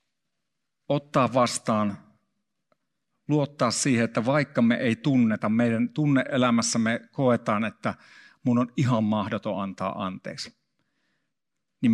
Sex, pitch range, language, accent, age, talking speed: male, 115-140 Hz, Finnish, native, 50-69, 100 wpm